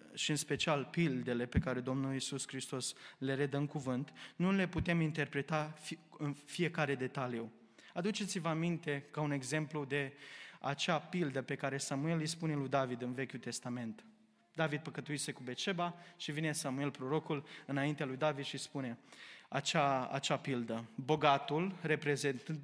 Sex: male